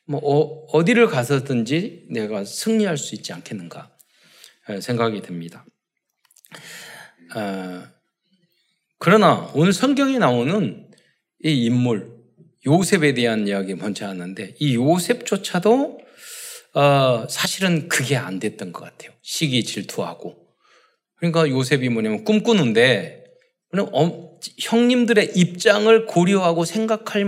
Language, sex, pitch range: Korean, male, 140-215 Hz